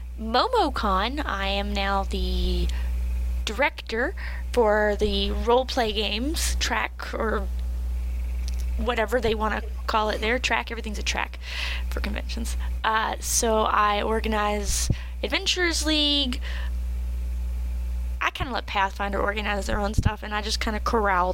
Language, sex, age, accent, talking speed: English, female, 10-29, American, 130 wpm